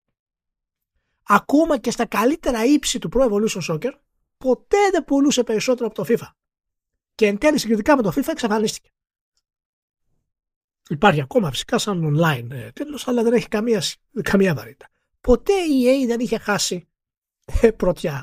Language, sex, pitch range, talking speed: Greek, male, 170-245 Hz, 140 wpm